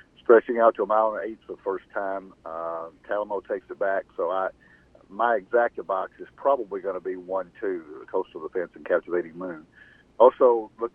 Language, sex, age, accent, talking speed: English, male, 50-69, American, 190 wpm